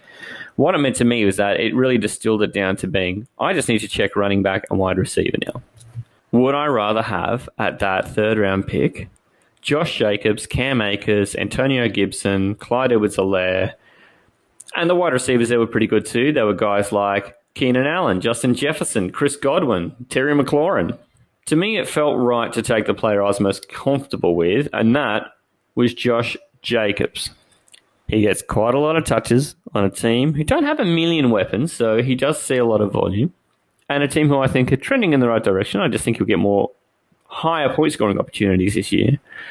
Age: 20-39